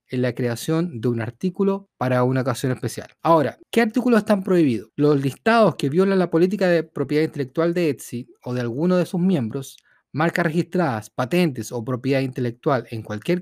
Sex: male